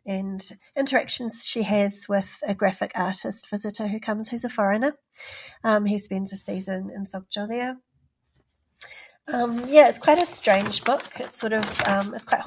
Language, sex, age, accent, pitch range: Korean, female, 40-59, Australian, 195-225 Hz